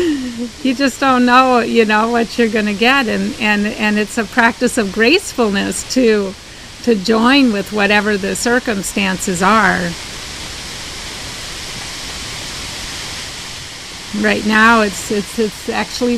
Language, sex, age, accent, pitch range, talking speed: English, female, 40-59, American, 215-250 Hz, 120 wpm